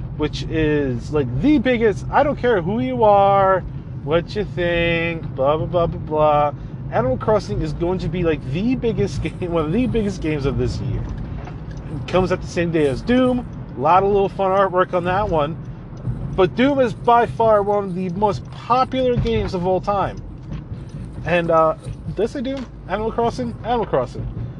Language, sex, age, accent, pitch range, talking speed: English, male, 30-49, American, 135-195 Hz, 190 wpm